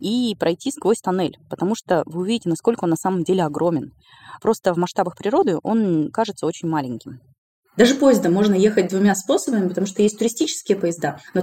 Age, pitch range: 20-39, 170-225 Hz